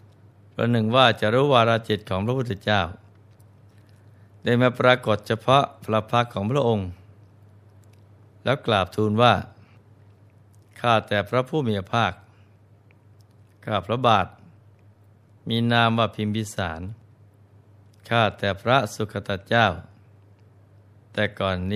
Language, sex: Thai, male